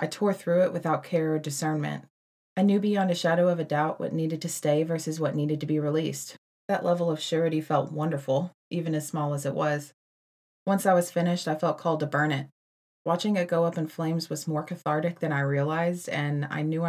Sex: female